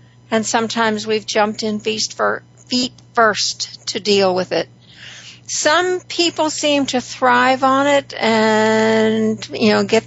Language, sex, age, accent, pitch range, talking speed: English, female, 60-79, American, 200-245 Hz, 145 wpm